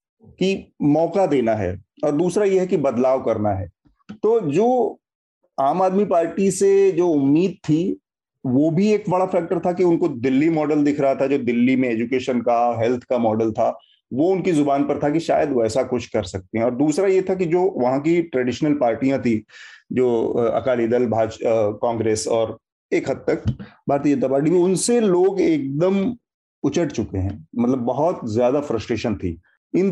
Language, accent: Hindi, native